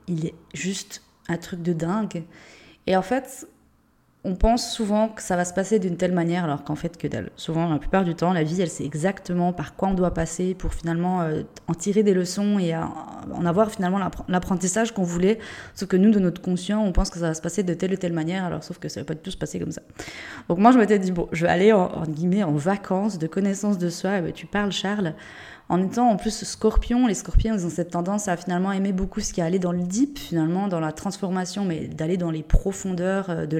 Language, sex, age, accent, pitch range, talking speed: French, female, 20-39, French, 170-205 Hz, 250 wpm